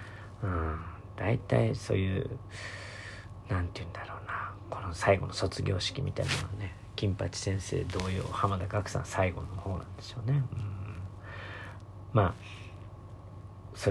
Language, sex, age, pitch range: Japanese, male, 40-59, 100-110 Hz